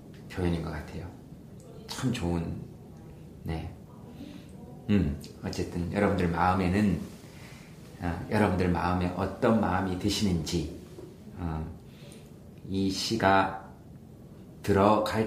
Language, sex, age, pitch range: Korean, male, 40-59, 85-95 Hz